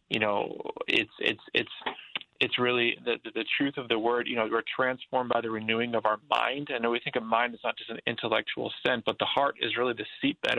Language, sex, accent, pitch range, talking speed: English, male, American, 110-125 Hz, 245 wpm